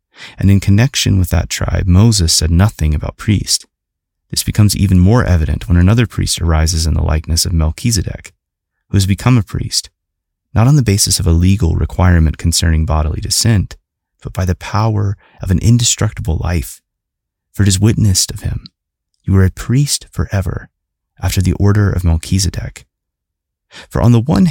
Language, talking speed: English, 170 wpm